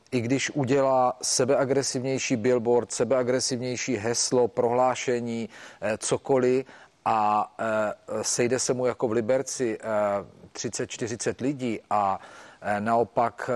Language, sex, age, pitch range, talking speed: Czech, male, 40-59, 115-130 Hz, 90 wpm